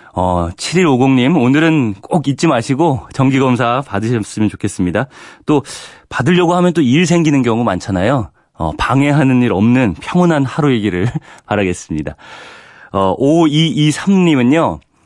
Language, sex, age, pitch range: Korean, male, 30-49, 100-140 Hz